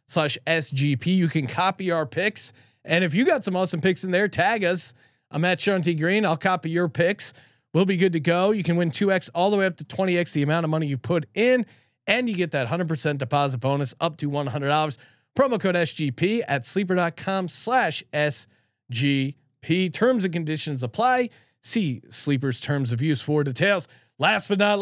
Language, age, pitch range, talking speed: English, 30-49, 145-190 Hz, 205 wpm